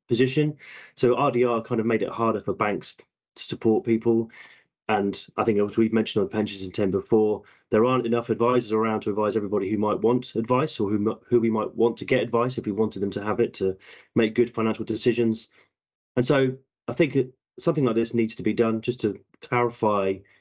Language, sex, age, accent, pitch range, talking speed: English, male, 30-49, British, 105-120 Hz, 210 wpm